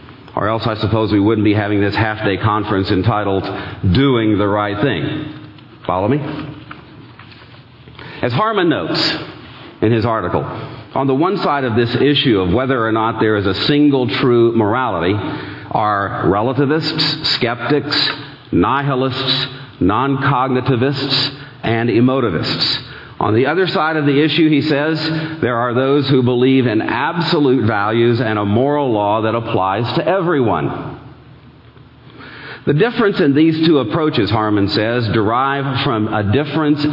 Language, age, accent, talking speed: English, 40-59, American, 140 wpm